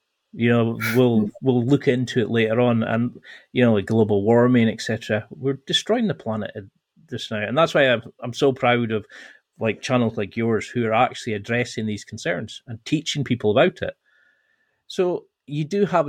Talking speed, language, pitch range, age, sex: 180 wpm, English, 115-140 Hz, 30-49, male